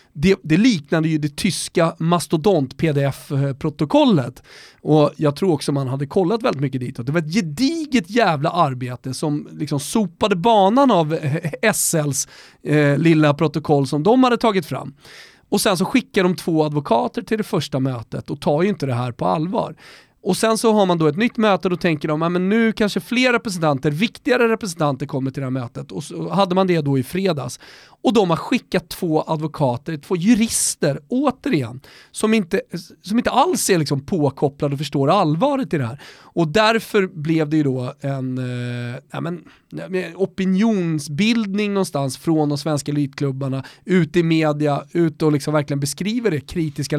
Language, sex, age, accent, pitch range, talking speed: Swedish, male, 30-49, native, 145-200 Hz, 180 wpm